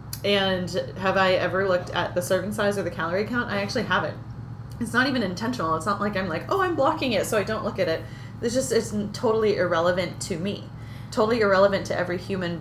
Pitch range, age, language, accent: 160-200 Hz, 30-49, English, American